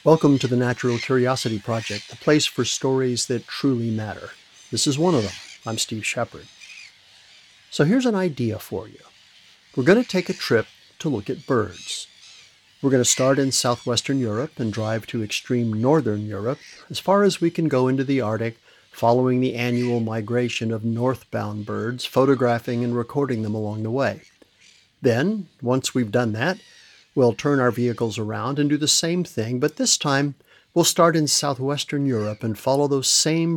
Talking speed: 180 wpm